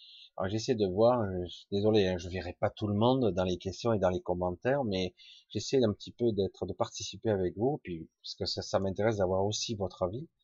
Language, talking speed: French, 225 wpm